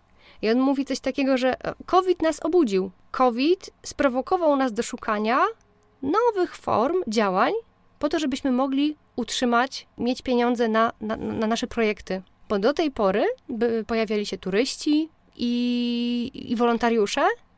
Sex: female